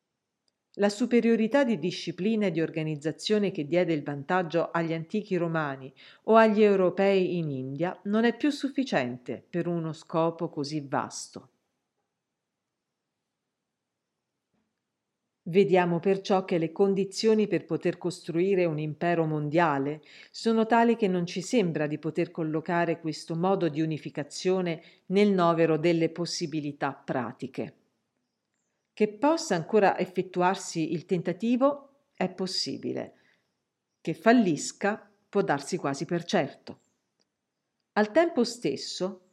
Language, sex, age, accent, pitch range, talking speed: Italian, female, 50-69, native, 160-200 Hz, 115 wpm